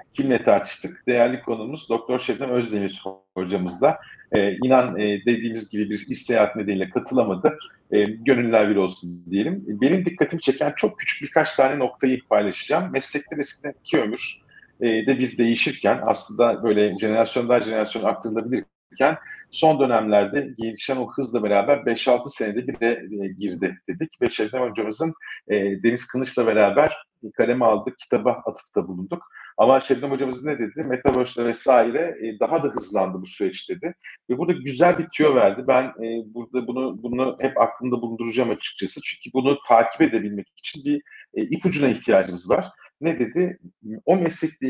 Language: Turkish